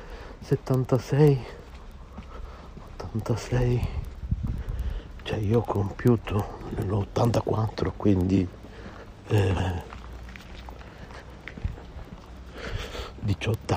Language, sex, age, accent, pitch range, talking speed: Italian, male, 60-79, native, 90-110 Hz, 45 wpm